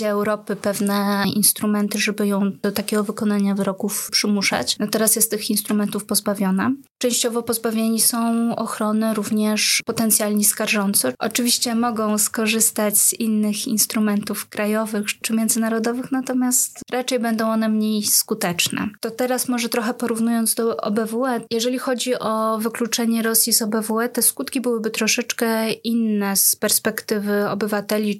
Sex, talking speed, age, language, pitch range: female, 130 wpm, 20-39, Polish, 210-230 Hz